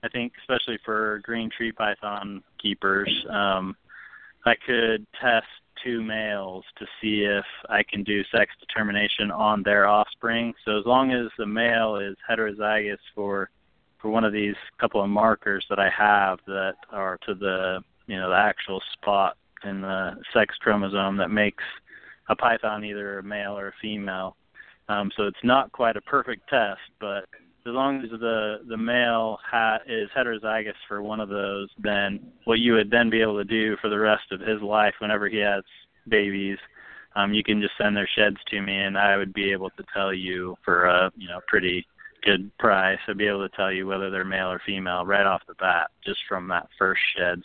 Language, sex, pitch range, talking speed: English, male, 95-110 Hz, 190 wpm